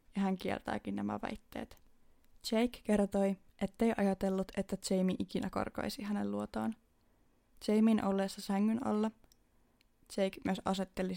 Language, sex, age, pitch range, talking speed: Finnish, female, 20-39, 185-210 Hz, 120 wpm